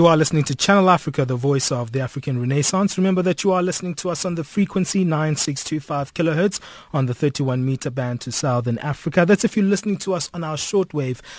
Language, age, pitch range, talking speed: English, 30-49, 130-175 Hz, 210 wpm